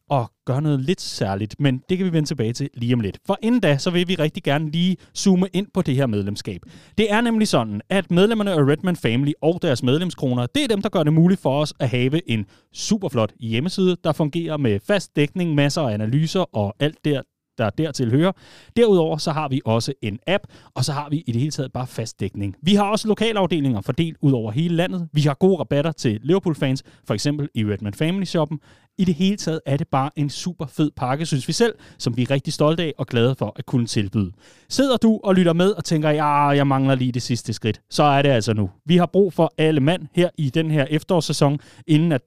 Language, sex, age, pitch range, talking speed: Danish, male, 30-49, 125-170 Hz, 235 wpm